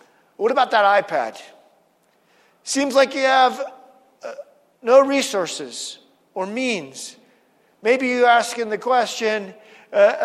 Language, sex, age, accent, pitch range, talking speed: English, male, 50-69, American, 200-265 Hz, 110 wpm